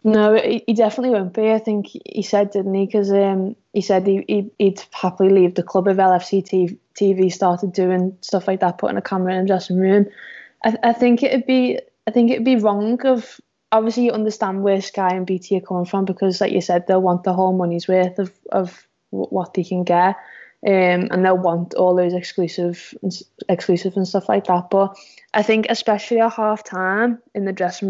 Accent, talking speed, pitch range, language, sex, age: British, 200 wpm, 180-210 Hz, English, female, 20-39